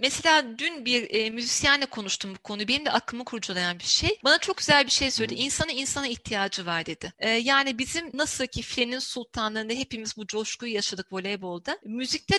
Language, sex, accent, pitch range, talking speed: Turkish, female, native, 215-275 Hz, 185 wpm